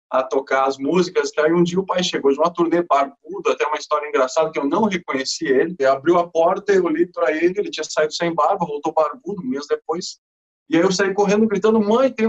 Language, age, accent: Portuguese, 20-39, Brazilian